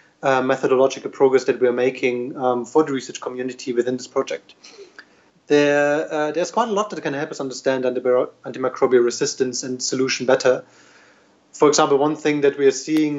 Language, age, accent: English, 30-49, German